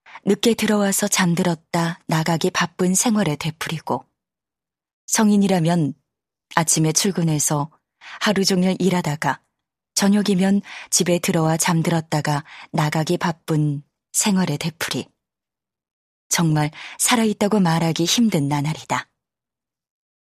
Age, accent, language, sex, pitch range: 20-39, native, Korean, female, 155-210 Hz